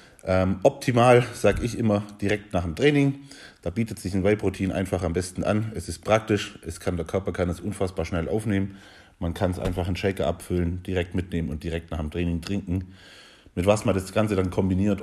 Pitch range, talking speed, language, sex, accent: 90-105 Hz, 200 wpm, German, male, German